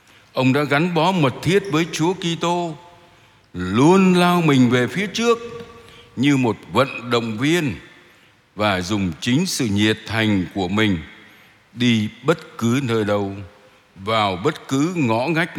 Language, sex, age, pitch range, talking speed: Vietnamese, male, 60-79, 100-140 Hz, 145 wpm